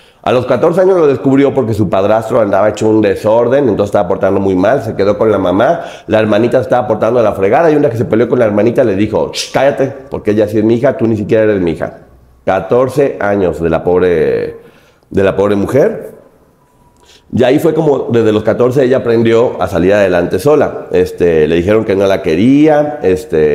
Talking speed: 215 wpm